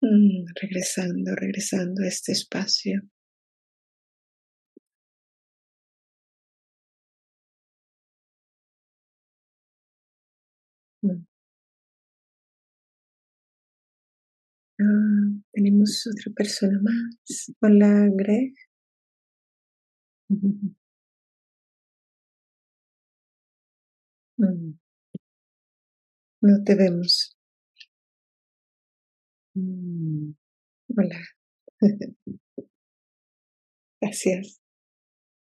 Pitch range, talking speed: 185-210 Hz, 35 wpm